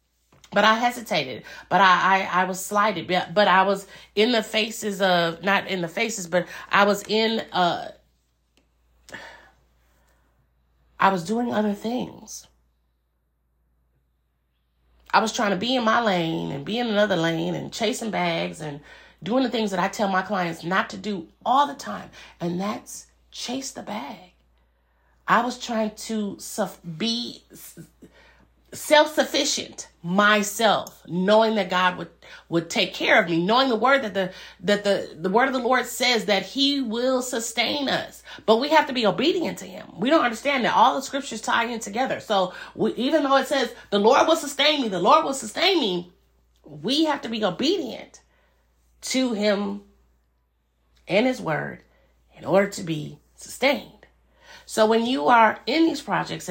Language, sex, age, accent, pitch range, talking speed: English, female, 30-49, American, 165-240 Hz, 170 wpm